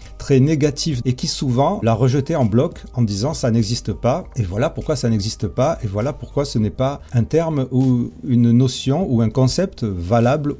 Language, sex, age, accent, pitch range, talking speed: French, male, 40-59, French, 115-145 Hz, 200 wpm